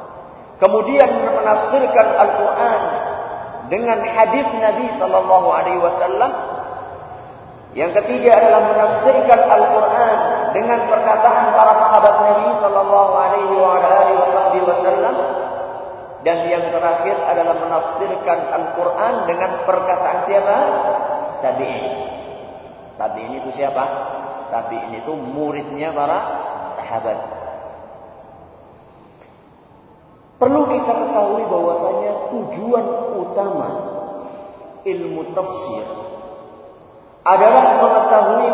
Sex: male